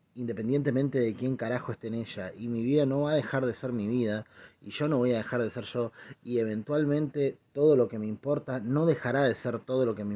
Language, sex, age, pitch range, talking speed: Spanish, male, 30-49, 105-140 Hz, 250 wpm